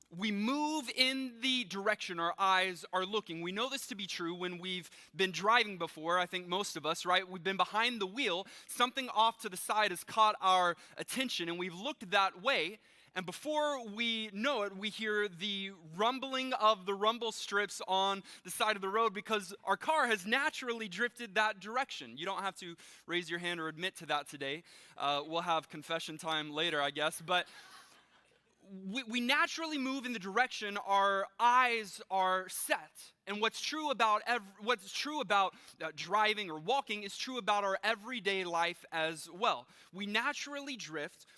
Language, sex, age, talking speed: English, male, 20-39, 175 wpm